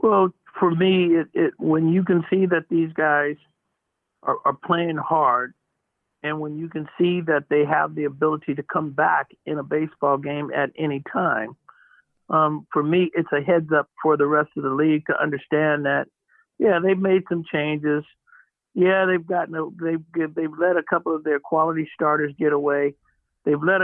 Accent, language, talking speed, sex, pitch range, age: American, English, 185 wpm, male, 145-170 Hz, 60-79